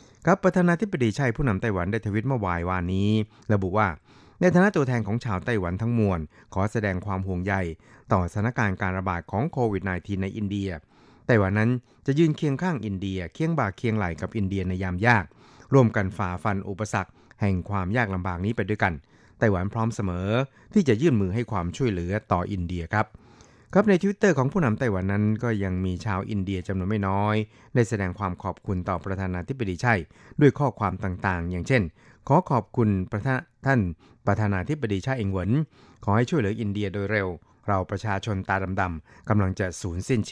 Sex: male